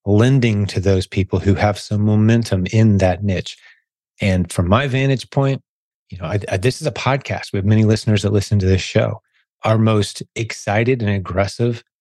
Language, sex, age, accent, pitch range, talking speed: English, male, 30-49, American, 100-120 Hz, 180 wpm